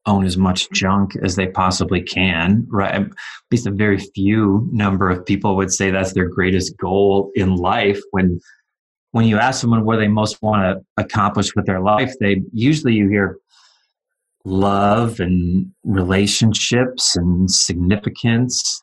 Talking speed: 155 wpm